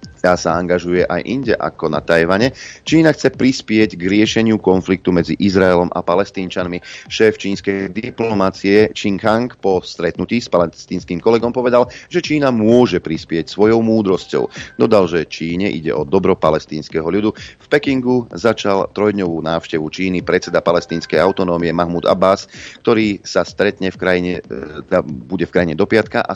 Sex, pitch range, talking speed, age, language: male, 90-115 Hz, 150 wpm, 30-49, Slovak